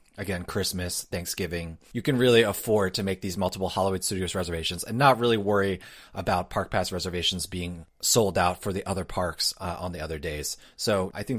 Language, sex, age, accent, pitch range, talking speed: English, male, 30-49, American, 95-125 Hz, 195 wpm